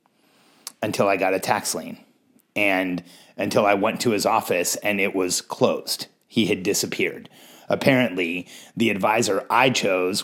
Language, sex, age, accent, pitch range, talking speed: English, male, 30-49, American, 105-130 Hz, 145 wpm